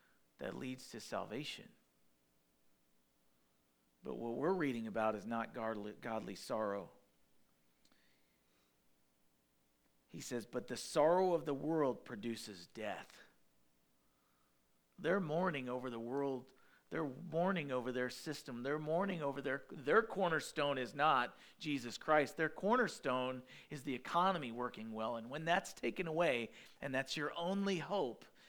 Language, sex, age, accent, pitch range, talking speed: English, male, 40-59, American, 110-160 Hz, 130 wpm